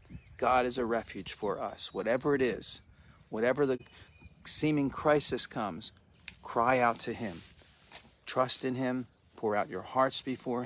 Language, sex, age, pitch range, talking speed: English, male, 50-69, 105-135 Hz, 145 wpm